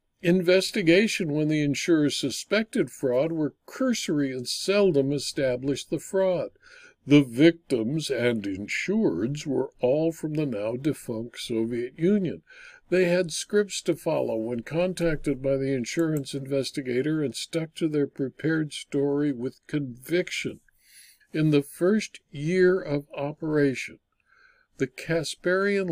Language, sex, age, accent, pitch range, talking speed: English, male, 60-79, American, 145-200 Hz, 120 wpm